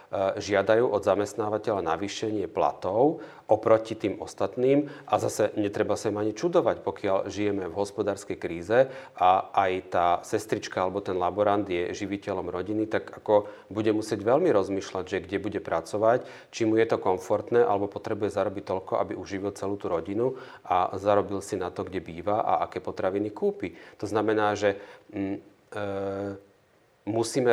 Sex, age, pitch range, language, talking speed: male, 40-59, 95-110 Hz, Slovak, 155 wpm